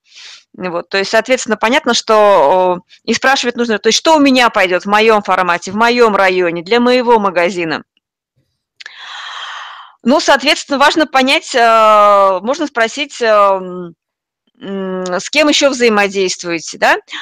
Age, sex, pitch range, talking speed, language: 20-39, female, 205-265 Hz, 115 wpm, Russian